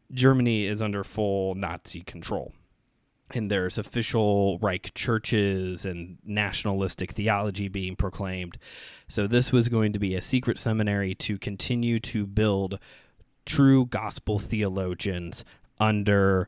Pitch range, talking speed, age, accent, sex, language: 95-120 Hz, 120 wpm, 20-39, American, male, English